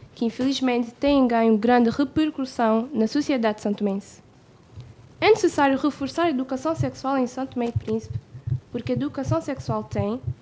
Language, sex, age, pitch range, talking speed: Portuguese, female, 10-29, 215-270 Hz, 150 wpm